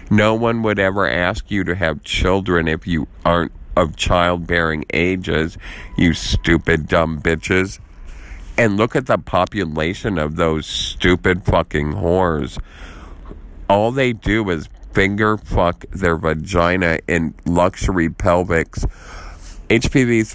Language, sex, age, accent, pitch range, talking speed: English, male, 50-69, American, 80-95 Hz, 120 wpm